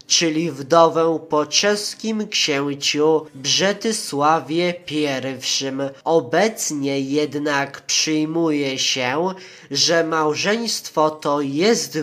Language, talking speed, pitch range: Polish, 75 wpm, 150-175 Hz